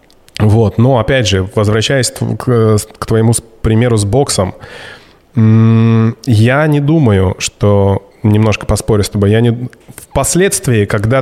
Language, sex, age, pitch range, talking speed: Russian, male, 20-39, 105-120 Hz, 120 wpm